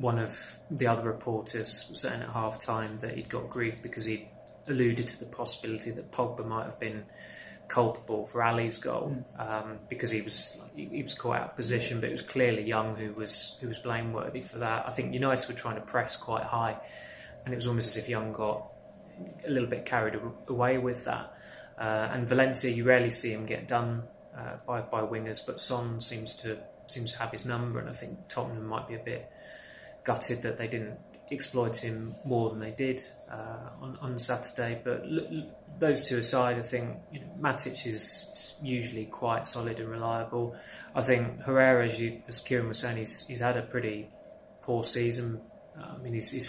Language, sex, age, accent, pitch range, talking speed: English, male, 20-39, British, 110-125 Hz, 200 wpm